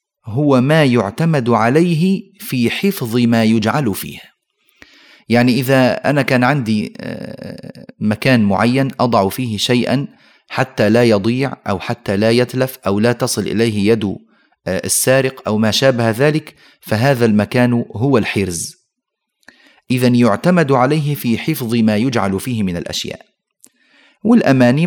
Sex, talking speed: male, 125 wpm